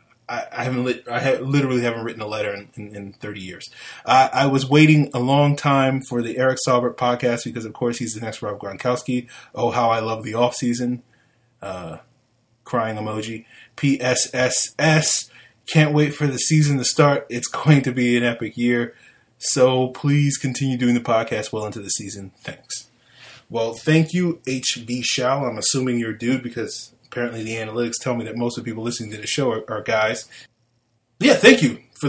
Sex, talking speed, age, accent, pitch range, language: male, 195 wpm, 20-39, American, 115-135 Hz, English